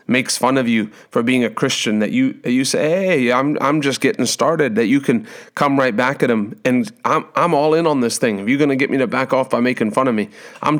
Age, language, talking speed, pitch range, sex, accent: 30-49, English, 265 wpm, 115-135 Hz, male, American